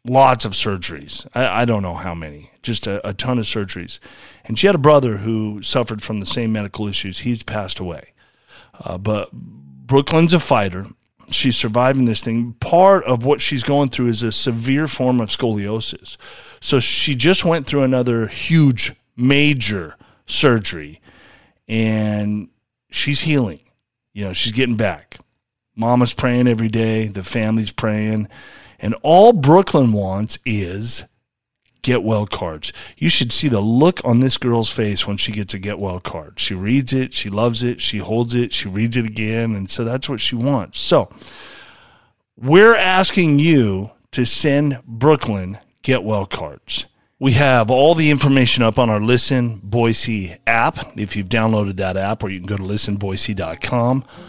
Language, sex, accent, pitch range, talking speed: English, male, American, 105-130 Hz, 165 wpm